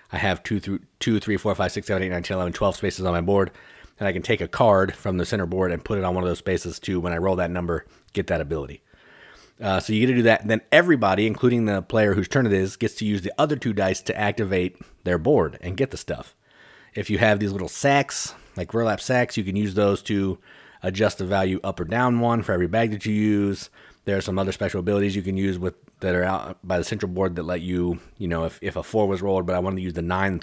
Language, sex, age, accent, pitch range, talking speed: English, male, 30-49, American, 90-110 Hz, 275 wpm